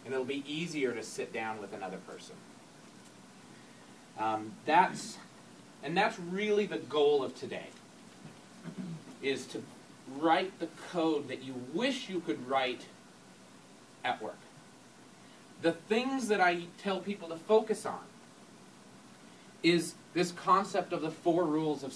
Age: 40-59